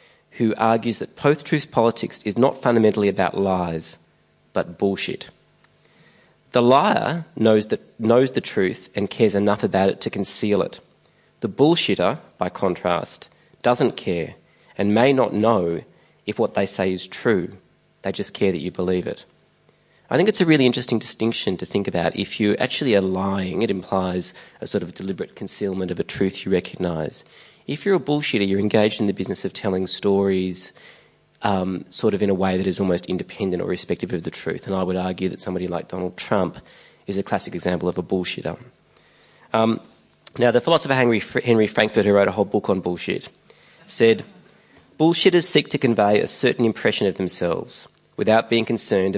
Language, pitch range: English, 95-115 Hz